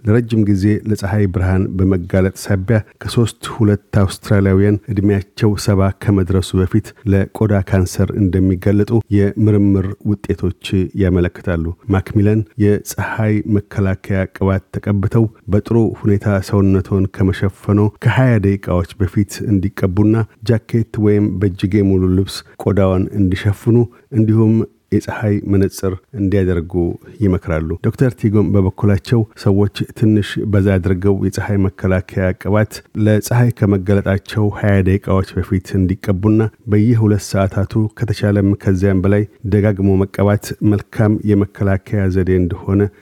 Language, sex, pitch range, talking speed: Amharic, male, 95-105 Hz, 100 wpm